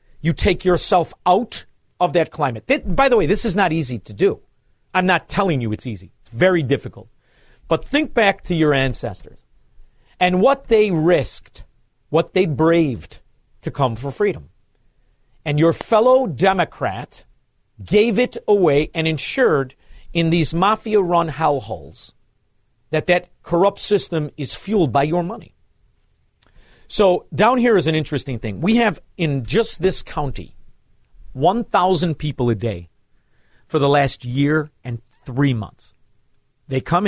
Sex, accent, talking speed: male, American, 145 wpm